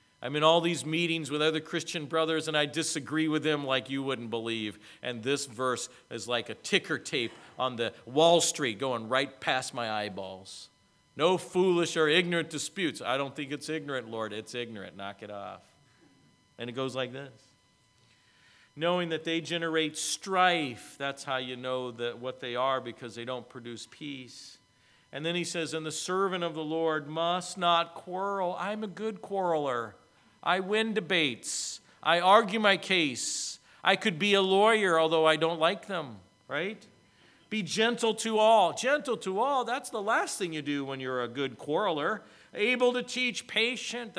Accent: American